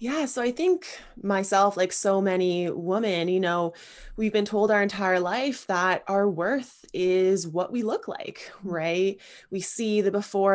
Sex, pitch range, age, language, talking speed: female, 165-200 Hz, 20-39, English, 170 wpm